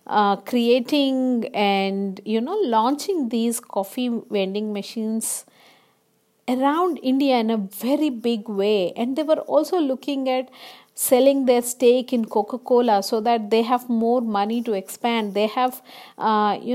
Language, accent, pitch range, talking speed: English, Indian, 220-305 Hz, 145 wpm